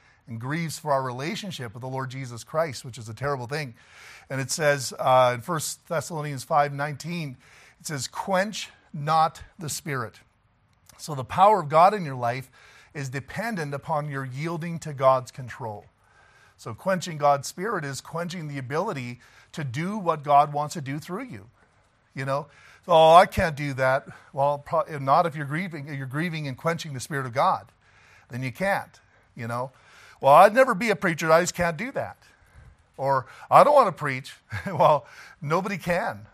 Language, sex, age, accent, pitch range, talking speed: English, male, 40-59, American, 130-165 Hz, 185 wpm